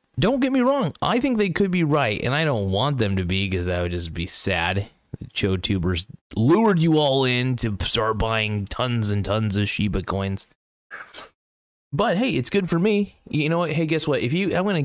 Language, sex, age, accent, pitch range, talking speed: English, male, 20-39, American, 105-140 Hz, 220 wpm